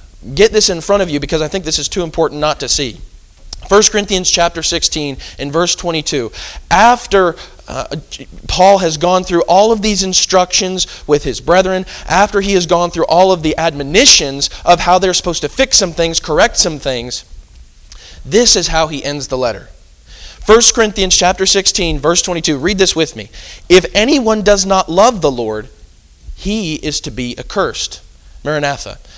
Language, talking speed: English, 175 wpm